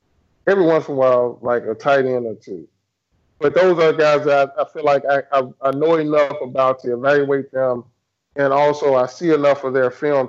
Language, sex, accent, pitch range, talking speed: English, male, American, 130-155 Hz, 210 wpm